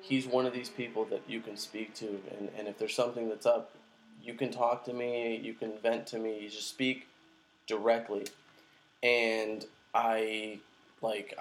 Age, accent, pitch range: 20-39, American, 110-130 Hz